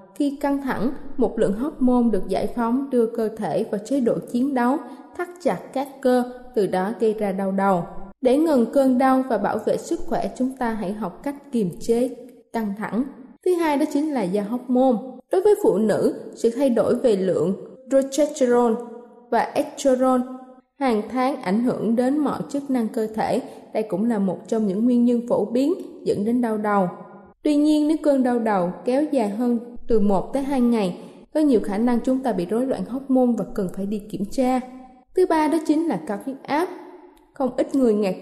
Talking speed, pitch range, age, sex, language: 205 wpm, 215-270 Hz, 20-39, female, Vietnamese